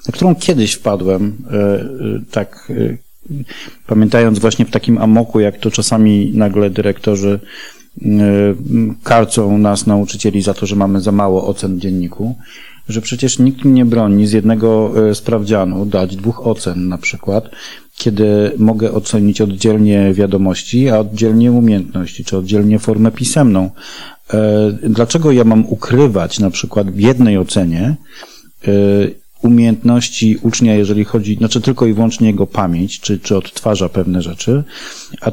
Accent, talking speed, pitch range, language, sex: native, 130 wpm, 100-120 Hz, Polish, male